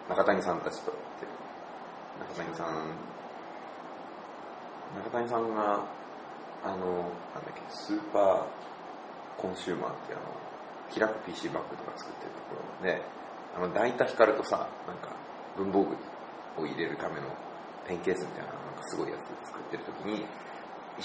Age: 30-49